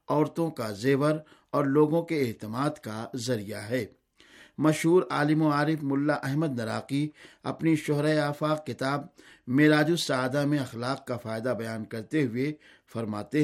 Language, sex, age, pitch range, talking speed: Urdu, male, 50-69, 130-155 Hz, 140 wpm